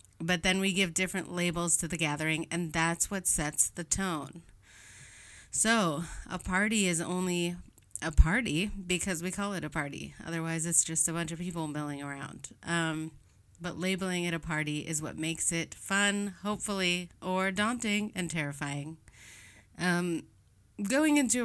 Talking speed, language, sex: 155 wpm, English, female